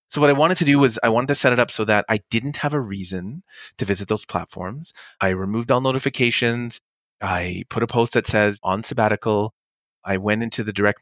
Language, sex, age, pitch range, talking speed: English, male, 30-49, 100-135 Hz, 225 wpm